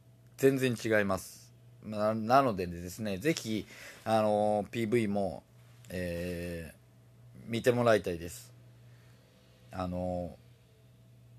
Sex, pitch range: male, 90-115 Hz